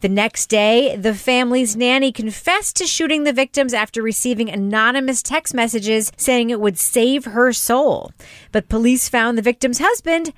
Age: 40-59